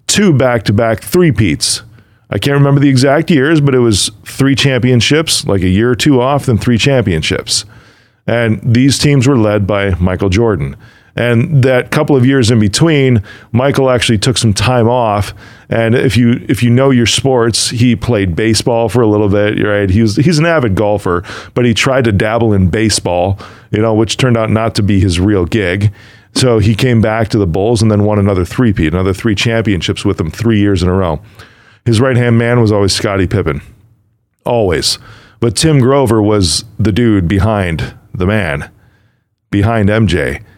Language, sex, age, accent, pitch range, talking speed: English, male, 40-59, American, 105-125 Hz, 190 wpm